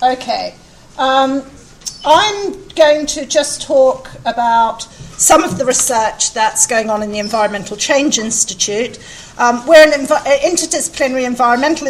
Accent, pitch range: British, 220-280 Hz